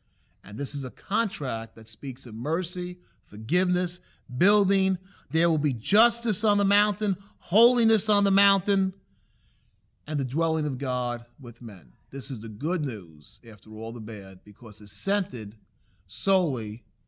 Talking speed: 150 wpm